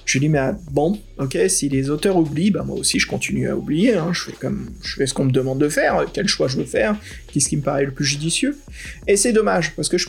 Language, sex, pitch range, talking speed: French, male, 135-175 Hz, 285 wpm